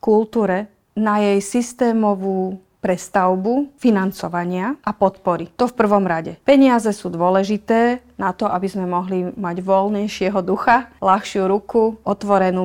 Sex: female